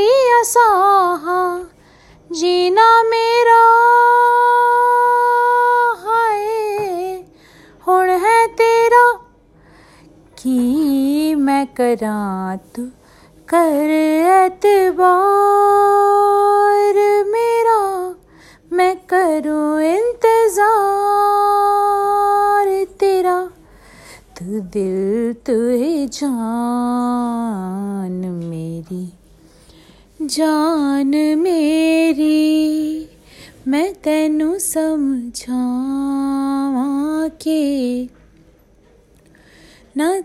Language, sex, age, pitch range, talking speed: Hindi, female, 20-39, 275-375 Hz, 40 wpm